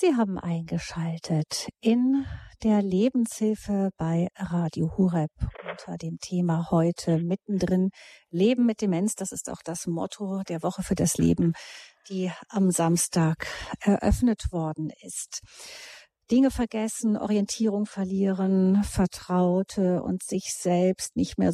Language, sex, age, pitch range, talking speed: German, female, 50-69, 180-215 Hz, 120 wpm